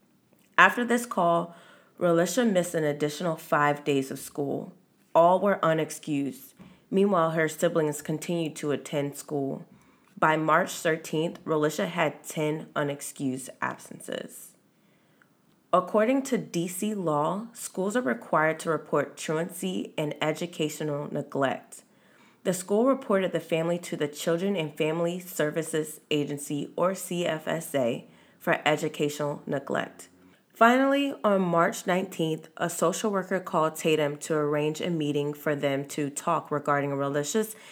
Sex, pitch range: female, 150-180 Hz